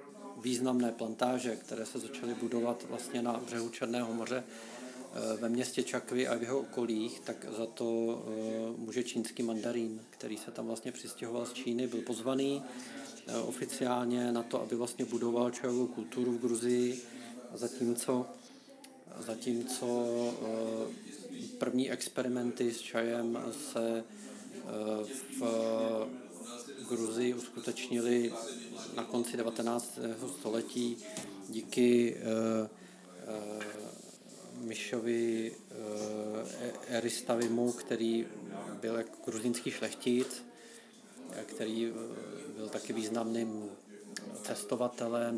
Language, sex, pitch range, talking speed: Czech, male, 115-125 Hz, 100 wpm